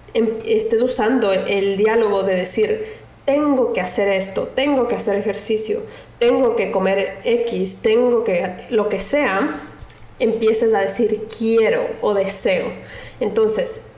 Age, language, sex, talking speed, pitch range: 20-39, Spanish, female, 130 wpm, 200-255 Hz